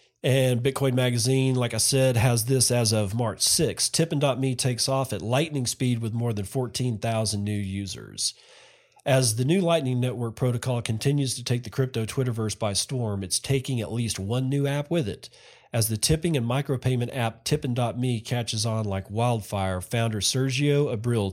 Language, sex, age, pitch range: English, male, 40-59, 110-135 Hz